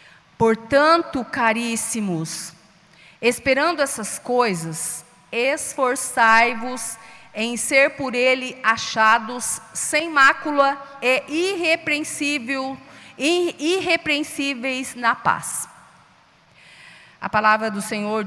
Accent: Brazilian